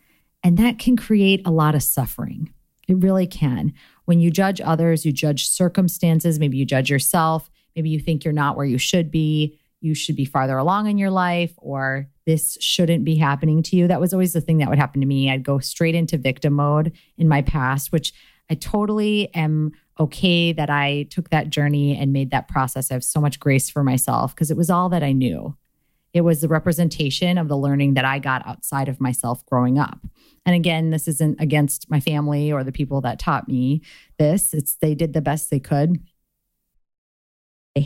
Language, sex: English, female